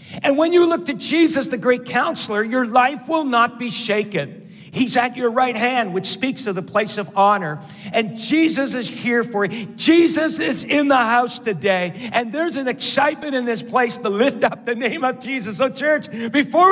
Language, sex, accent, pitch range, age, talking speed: English, male, American, 185-255 Hz, 50-69, 200 wpm